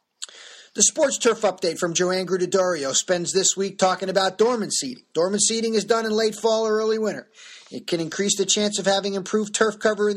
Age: 40-59